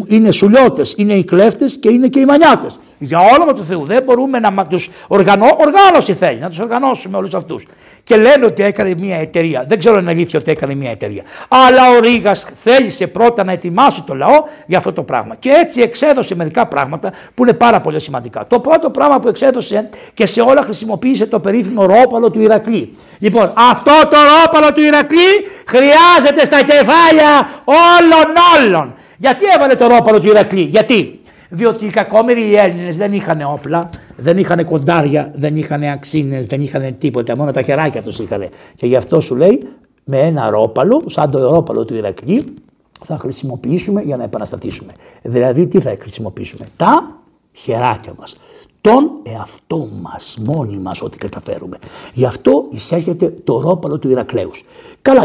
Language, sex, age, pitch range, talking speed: Greek, male, 60-79, 155-255 Hz, 170 wpm